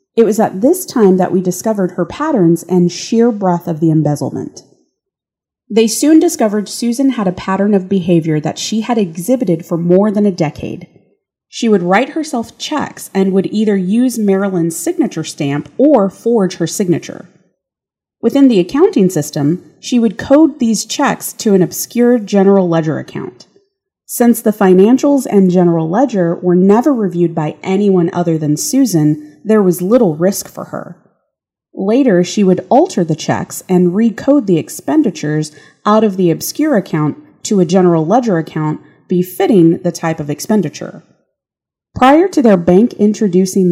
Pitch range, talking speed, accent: 175-235 Hz, 160 wpm, American